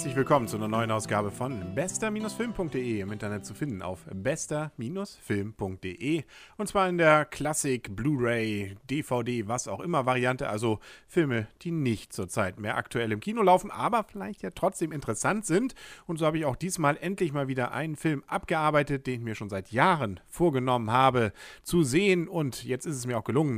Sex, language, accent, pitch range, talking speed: male, German, German, 120-170 Hz, 180 wpm